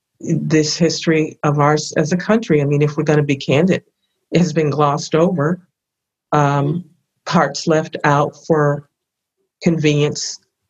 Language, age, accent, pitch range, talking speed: English, 50-69, American, 145-165 Hz, 145 wpm